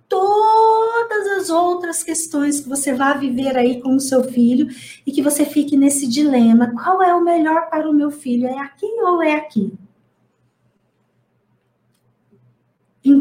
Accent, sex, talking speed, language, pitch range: Brazilian, female, 150 wpm, Portuguese, 230-315 Hz